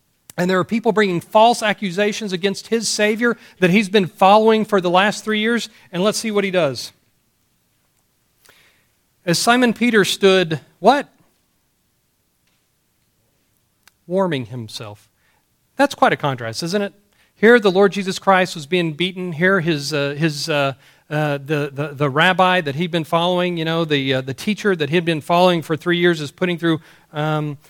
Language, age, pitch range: English, 40-59, 140-190 Hz